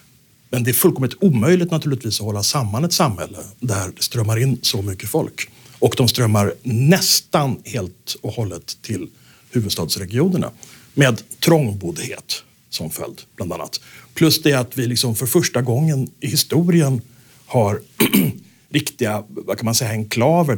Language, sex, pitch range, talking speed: Swedish, male, 110-150 Hz, 145 wpm